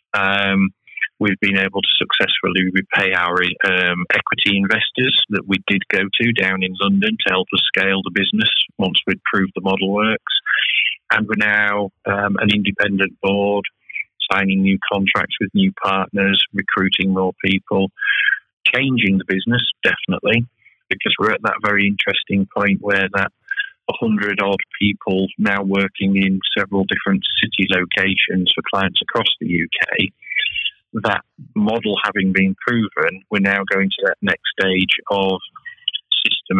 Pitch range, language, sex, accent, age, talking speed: 95-105 Hz, English, male, British, 30-49, 145 wpm